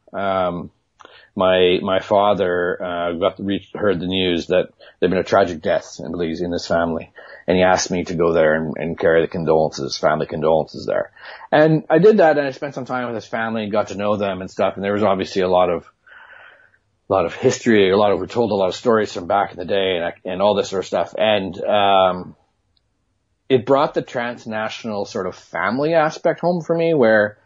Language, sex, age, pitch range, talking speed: English, male, 40-59, 90-110 Hz, 220 wpm